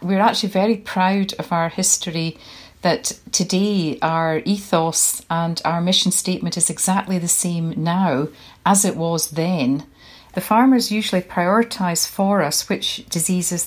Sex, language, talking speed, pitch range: female, English, 140 wpm, 170-205 Hz